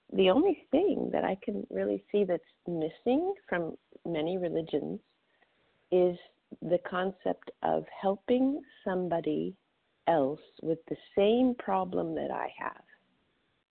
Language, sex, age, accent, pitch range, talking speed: English, female, 50-69, American, 150-185 Hz, 120 wpm